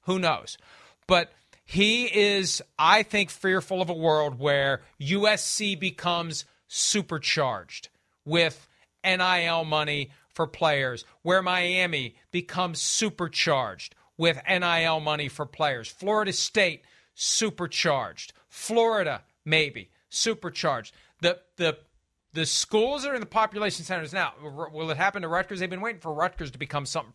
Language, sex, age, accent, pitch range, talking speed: English, male, 40-59, American, 150-200 Hz, 130 wpm